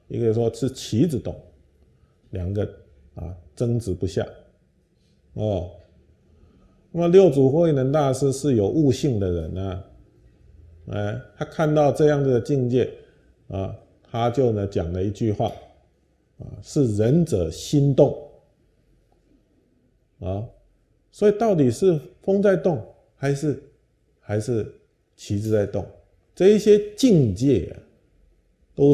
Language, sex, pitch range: Chinese, male, 95-140 Hz